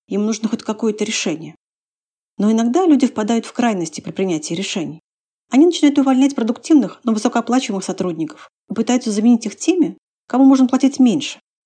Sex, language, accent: female, Russian, native